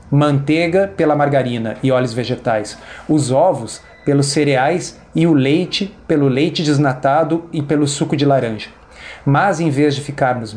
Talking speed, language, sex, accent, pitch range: 150 wpm, Portuguese, male, Brazilian, 130-160 Hz